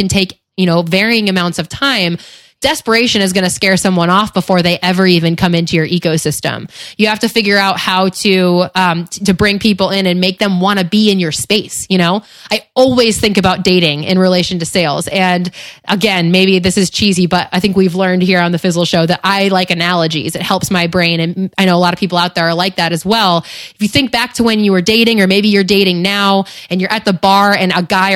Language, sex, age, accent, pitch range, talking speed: English, female, 20-39, American, 180-210 Hz, 245 wpm